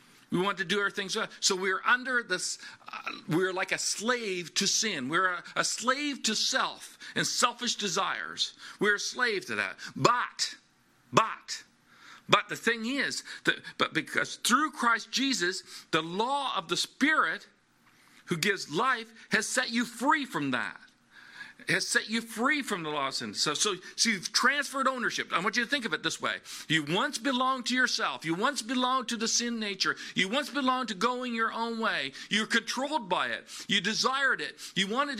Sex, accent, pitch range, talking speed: male, American, 205-265 Hz, 190 wpm